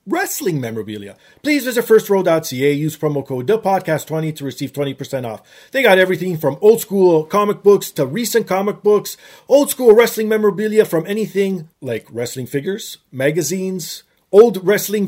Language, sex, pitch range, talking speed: English, male, 145-215 Hz, 145 wpm